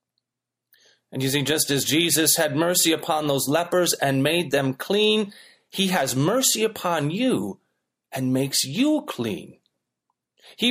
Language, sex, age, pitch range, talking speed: English, male, 30-49, 145-210 Hz, 140 wpm